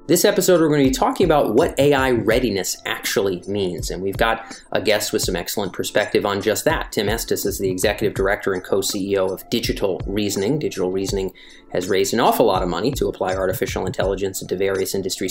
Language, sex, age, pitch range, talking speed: English, male, 30-49, 95-135 Hz, 200 wpm